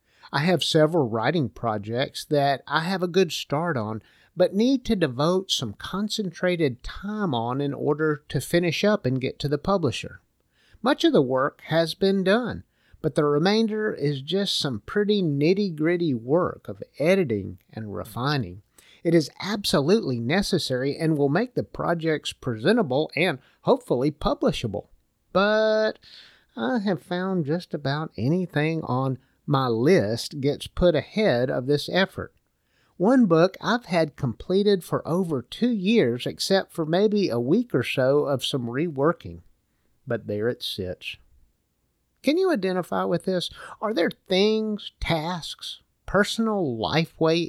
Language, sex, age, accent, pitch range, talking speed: English, male, 50-69, American, 135-195 Hz, 145 wpm